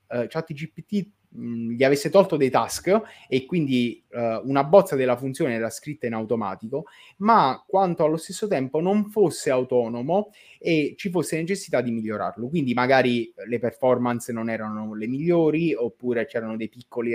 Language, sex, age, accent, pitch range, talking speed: Italian, male, 20-39, native, 120-170 Hz, 155 wpm